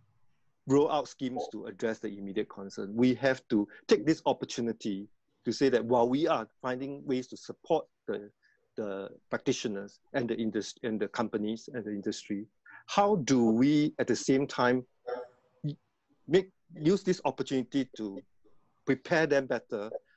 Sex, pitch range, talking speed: male, 110-140 Hz, 145 wpm